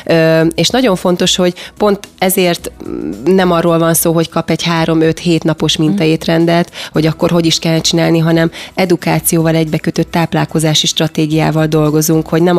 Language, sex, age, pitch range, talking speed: Hungarian, female, 30-49, 155-175 Hz, 145 wpm